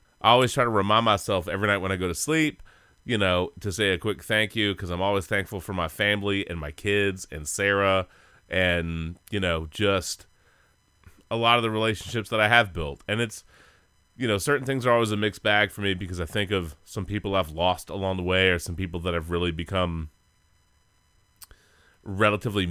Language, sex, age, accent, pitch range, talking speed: English, male, 30-49, American, 90-105 Hz, 205 wpm